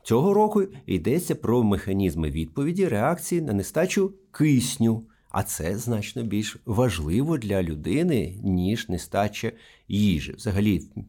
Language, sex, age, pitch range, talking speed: Ukrainian, male, 50-69, 100-160 Hz, 115 wpm